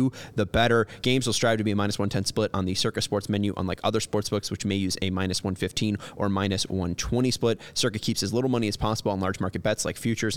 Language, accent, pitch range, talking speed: English, American, 100-115 Hz, 250 wpm